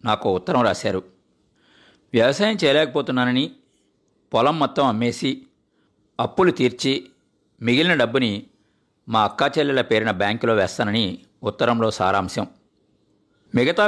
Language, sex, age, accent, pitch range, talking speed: Telugu, male, 50-69, native, 100-130 Hz, 85 wpm